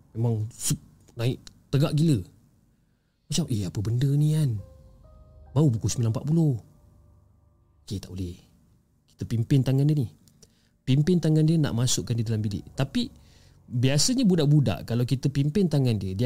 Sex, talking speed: male, 140 wpm